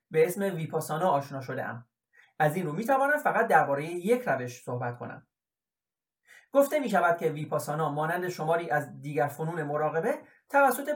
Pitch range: 150-210 Hz